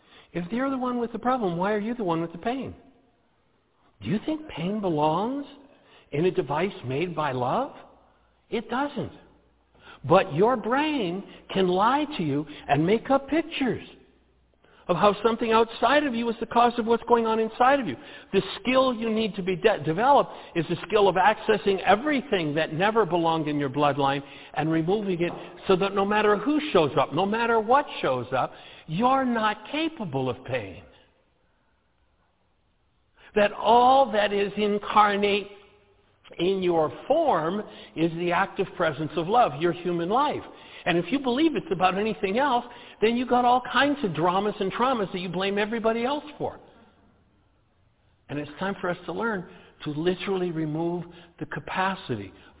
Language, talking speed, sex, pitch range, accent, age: English, 170 wpm, male, 160-235 Hz, American, 60-79